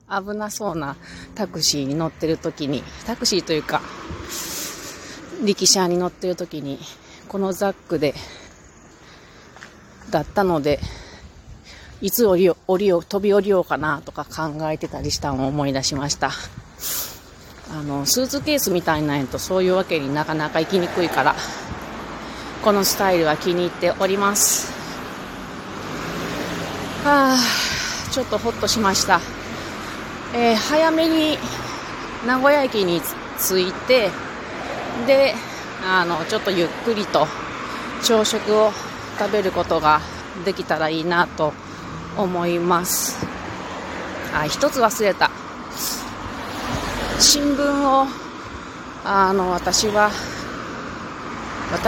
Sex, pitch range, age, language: female, 160-230 Hz, 30-49, Japanese